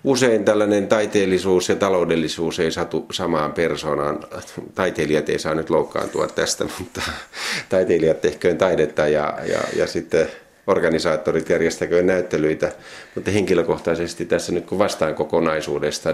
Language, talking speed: Finnish, 125 wpm